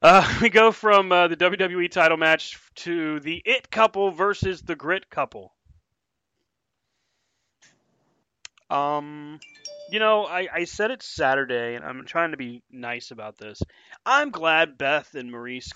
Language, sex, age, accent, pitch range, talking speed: English, male, 30-49, American, 125-190 Hz, 145 wpm